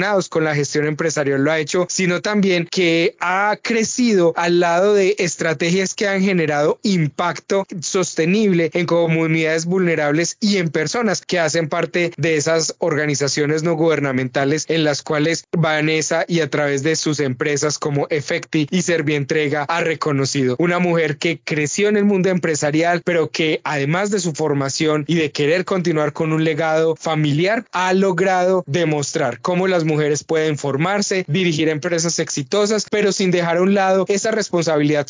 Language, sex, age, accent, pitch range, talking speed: Spanish, male, 20-39, Colombian, 155-185 Hz, 160 wpm